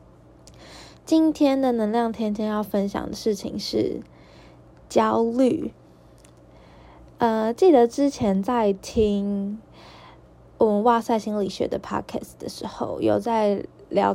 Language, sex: Chinese, female